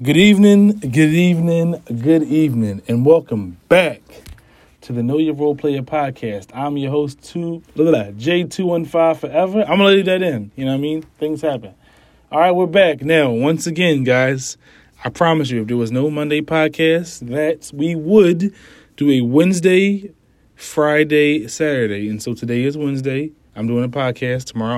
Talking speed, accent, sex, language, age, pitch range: 175 wpm, American, male, English, 20-39, 125-165 Hz